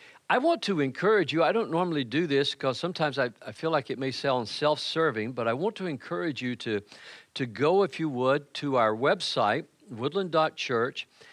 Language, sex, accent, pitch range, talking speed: English, male, American, 115-155 Hz, 190 wpm